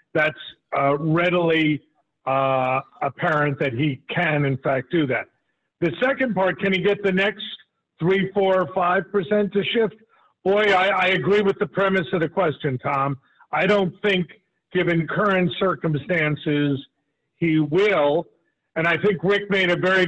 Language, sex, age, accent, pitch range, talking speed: English, male, 50-69, American, 145-180 Hz, 150 wpm